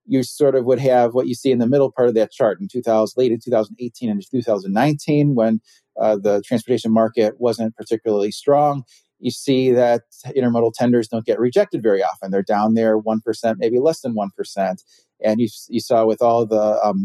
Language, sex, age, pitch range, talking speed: English, male, 30-49, 110-130 Hz, 195 wpm